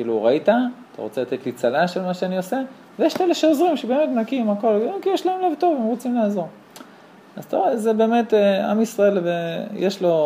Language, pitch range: Hebrew, 130-200 Hz